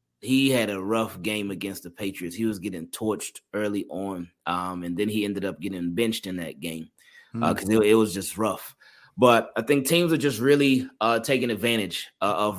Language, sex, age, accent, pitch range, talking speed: English, male, 20-39, American, 105-130 Hz, 210 wpm